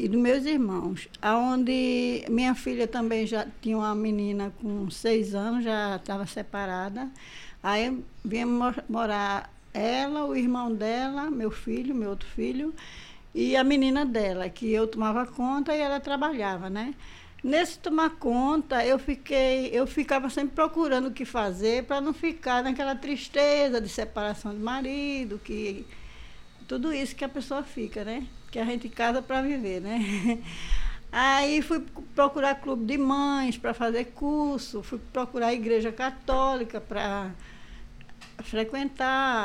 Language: Portuguese